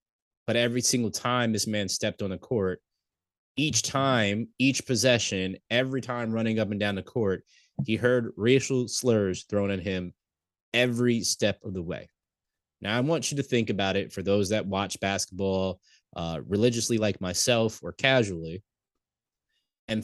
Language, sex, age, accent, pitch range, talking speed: English, male, 20-39, American, 95-120 Hz, 160 wpm